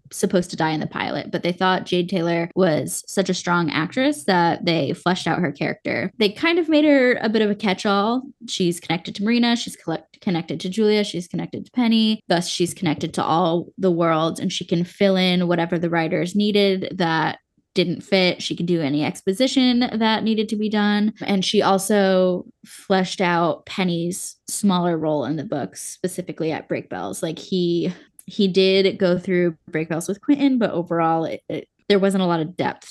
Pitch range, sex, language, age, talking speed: 175-215 Hz, female, English, 10-29, 190 wpm